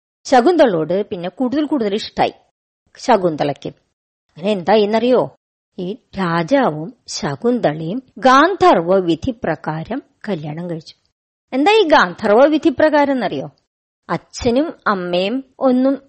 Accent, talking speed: native, 85 wpm